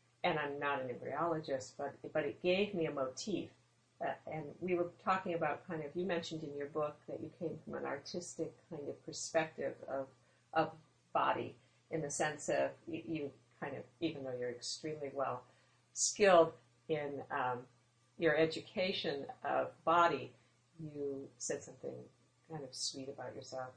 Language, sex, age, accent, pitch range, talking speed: English, female, 40-59, American, 135-165 Hz, 160 wpm